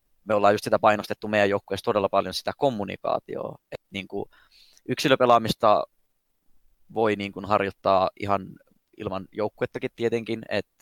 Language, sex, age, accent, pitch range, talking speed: Finnish, male, 20-39, native, 105-120 Hz, 120 wpm